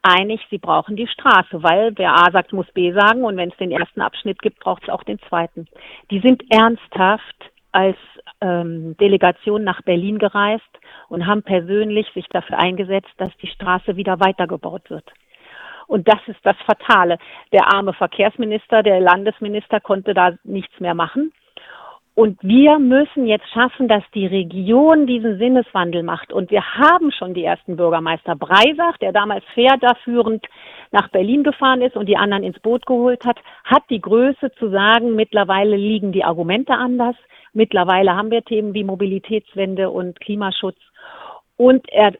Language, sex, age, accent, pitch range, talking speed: German, female, 50-69, German, 185-225 Hz, 160 wpm